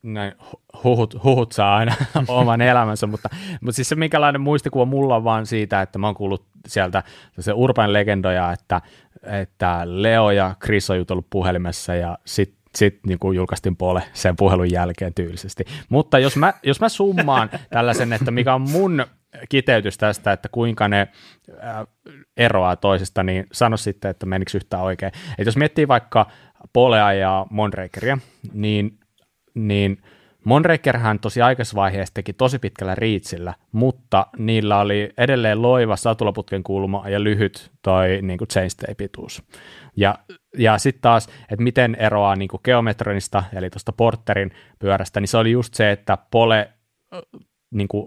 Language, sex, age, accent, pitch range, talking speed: Finnish, male, 30-49, native, 95-120 Hz, 145 wpm